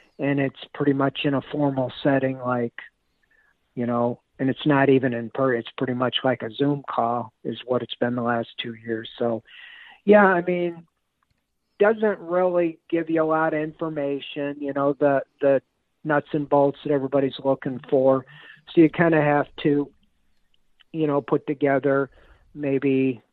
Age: 50-69